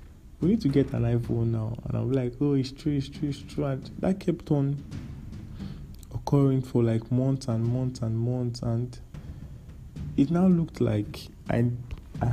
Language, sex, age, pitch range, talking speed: English, male, 20-39, 100-125 Hz, 175 wpm